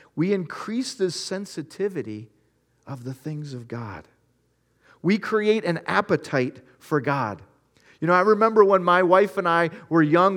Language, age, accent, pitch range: English, 40-59, American, 155-210 Hz